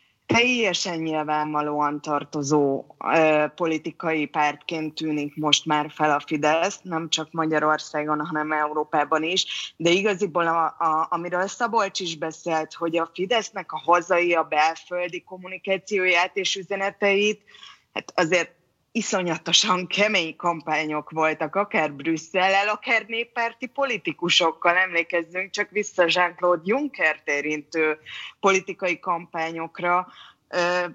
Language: Hungarian